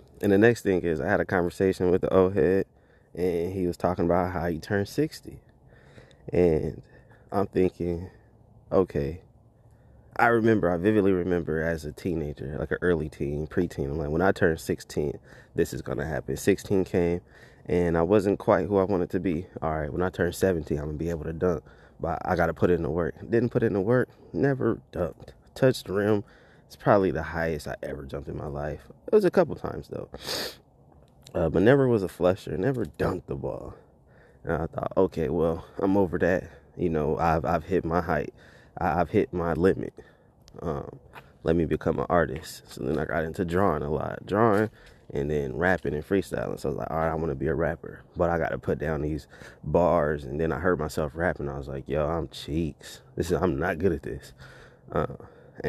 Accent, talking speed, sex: American, 210 wpm, male